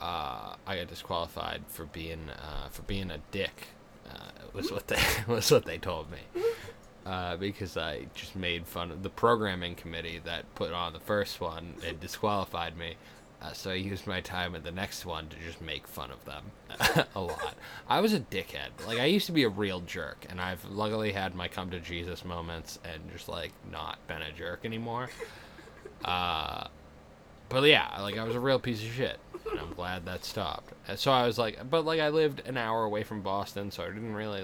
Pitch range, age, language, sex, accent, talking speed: 85-105 Hz, 20-39, English, male, American, 210 wpm